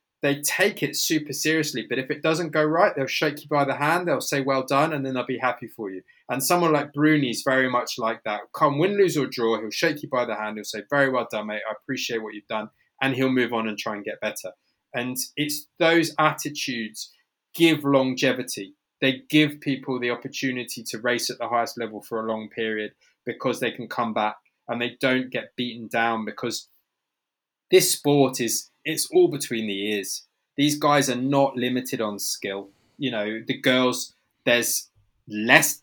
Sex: male